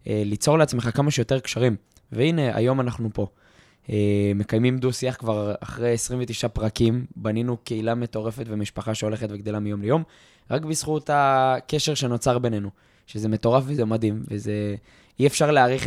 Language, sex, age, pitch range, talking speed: Hebrew, male, 20-39, 110-130 Hz, 145 wpm